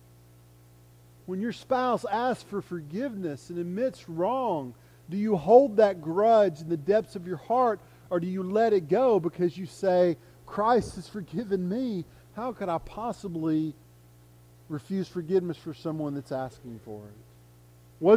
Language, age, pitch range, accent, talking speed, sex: English, 40-59, 120-205 Hz, American, 150 wpm, male